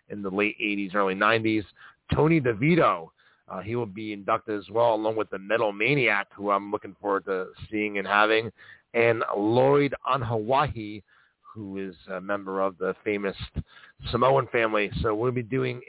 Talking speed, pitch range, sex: 165 wpm, 100-125 Hz, male